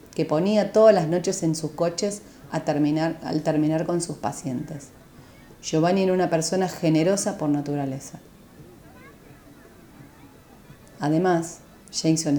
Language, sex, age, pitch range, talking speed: Spanish, female, 30-49, 150-190 Hz, 115 wpm